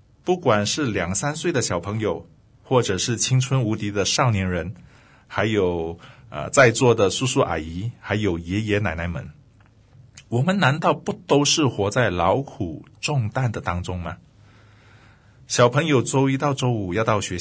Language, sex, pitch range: Chinese, male, 100-130 Hz